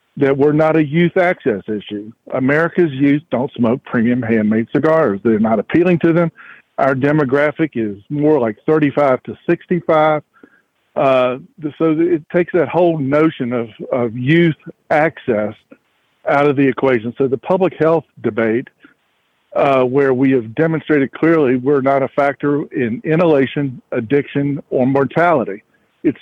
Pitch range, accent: 130-165 Hz, American